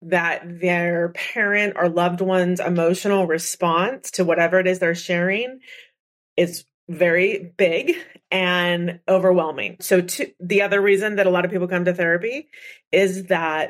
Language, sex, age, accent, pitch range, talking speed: English, female, 30-49, American, 165-200 Hz, 145 wpm